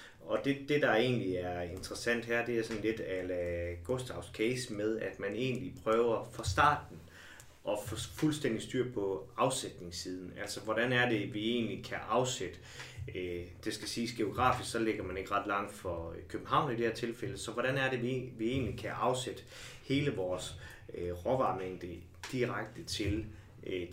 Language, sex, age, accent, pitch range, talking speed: Danish, male, 30-49, native, 95-120 Hz, 170 wpm